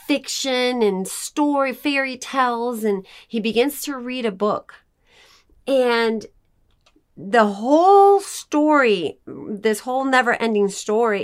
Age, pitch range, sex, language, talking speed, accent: 40-59, 220-285 Hz, female, English, 110 wpm, American